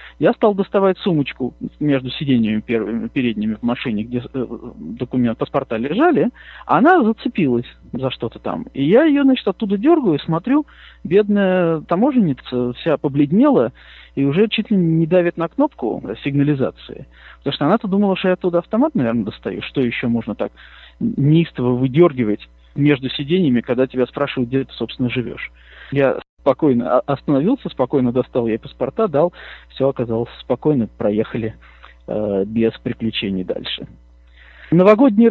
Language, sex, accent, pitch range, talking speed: Russian, male, native, 120-170 Hz, 135 wpm